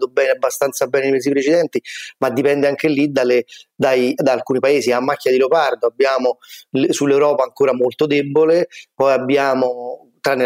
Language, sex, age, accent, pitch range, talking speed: Italian, male, 30-49, native, 130-170 Hz, 145 wpm